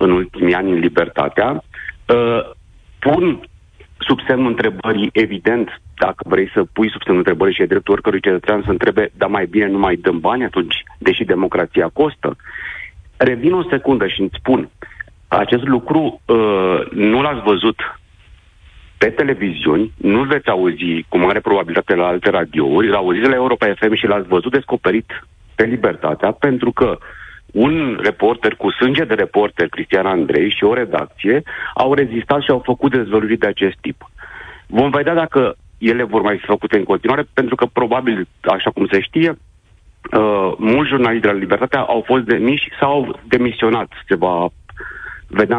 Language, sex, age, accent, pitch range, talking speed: Romanian, male, 40-59, native, 100-135 Hz, 165 wpm